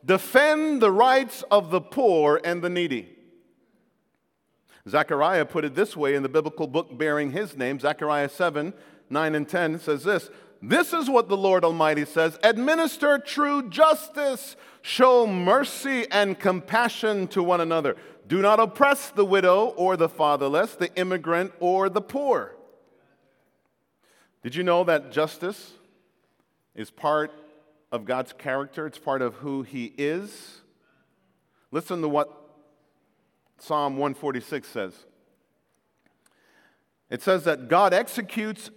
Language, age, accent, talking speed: English, 50-69, American, 135 wpm